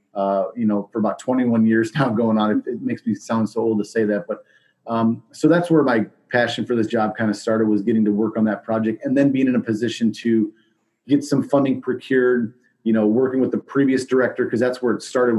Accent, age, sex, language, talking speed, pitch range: American, 30-49, male, English, 245 wpm, 110-125 Hz